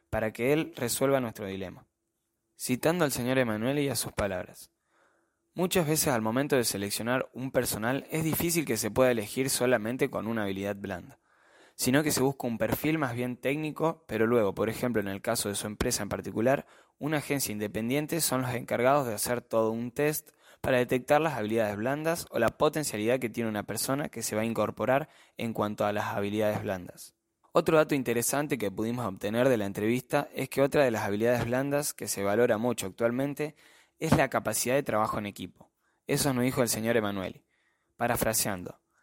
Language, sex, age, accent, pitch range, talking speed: Spanish, male, 10-29, Argentinian, 110-140 Hz, 190 wpm